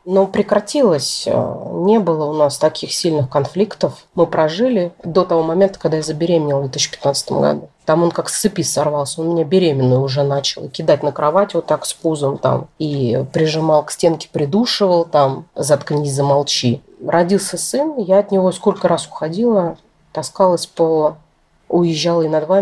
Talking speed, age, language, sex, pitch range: 160 wpm, 30-49, Russian, female, 155-190 Hz